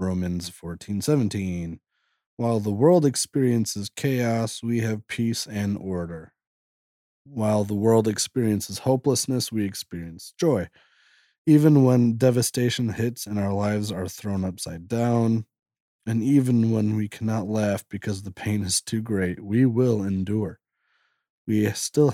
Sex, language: male, English